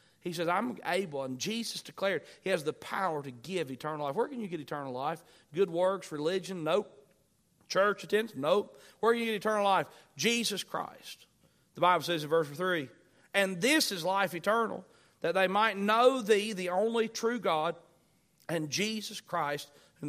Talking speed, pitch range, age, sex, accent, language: 180 wpm, 155-215 Hz, 40-59, male, American, English